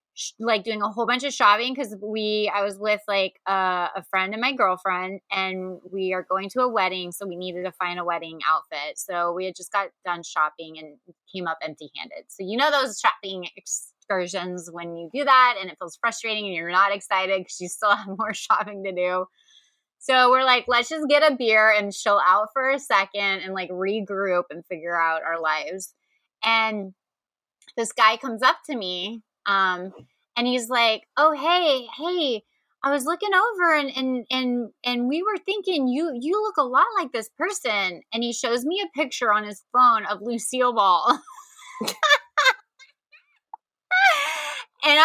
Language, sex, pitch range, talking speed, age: English, female, 190-300 Hz, 185 wpm, 20-39